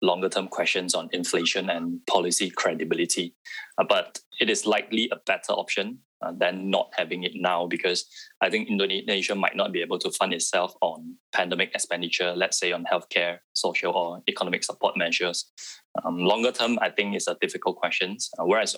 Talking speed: 180 wpm